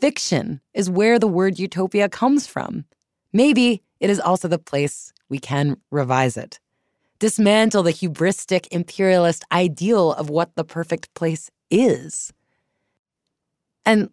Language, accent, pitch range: English, American, 150-200 Hz